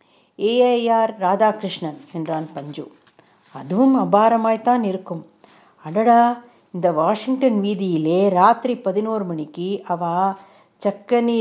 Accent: native